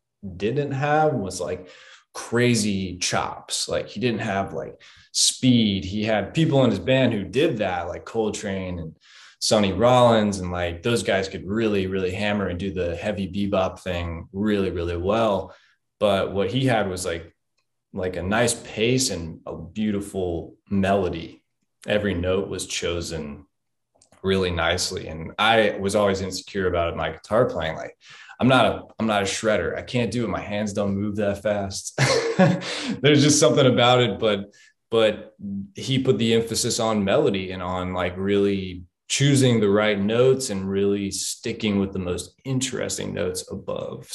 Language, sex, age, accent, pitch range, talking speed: English, male, 20-39, American, 95-115 Hz, 165 wpm